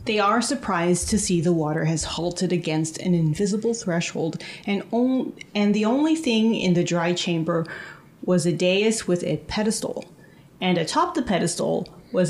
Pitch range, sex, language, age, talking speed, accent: 170-225 Hz, female, English, 30-49, 160 wpm, American